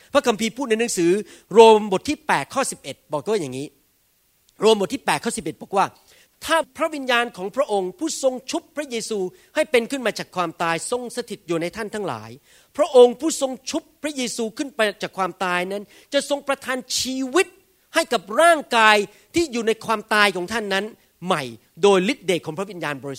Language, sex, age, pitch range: Thai, male, 40-59, 190-245 Hz